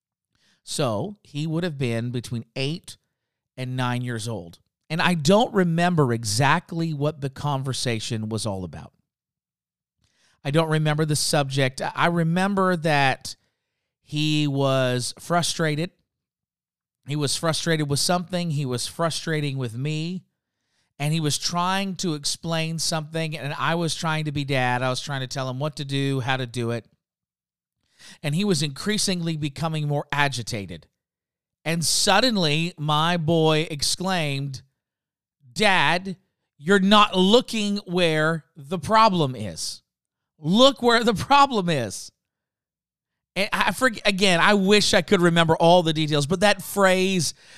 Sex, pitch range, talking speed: male, 130-175 Hz, 140 wpm